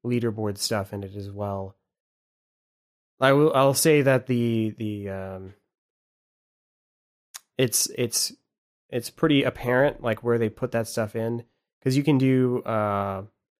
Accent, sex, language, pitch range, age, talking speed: American, male, English, 100-125 Hz, 20-39, 135 wpm